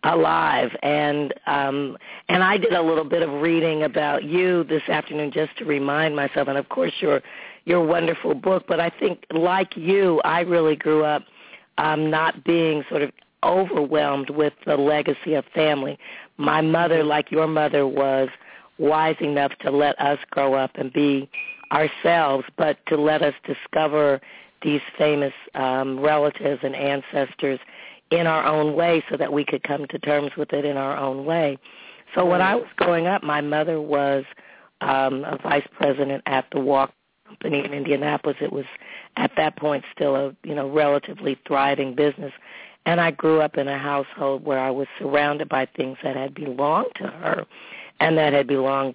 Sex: female